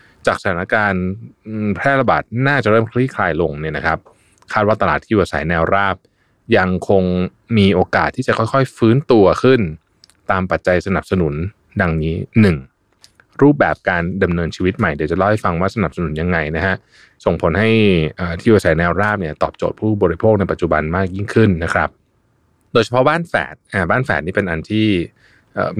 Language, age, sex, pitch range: Thai, 20-39, male, 85-110 Hz